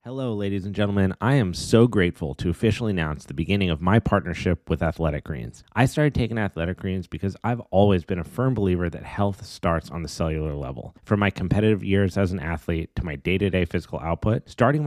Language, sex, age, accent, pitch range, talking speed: English, male, 30-49, American, 85-110 Hz, 205 wpm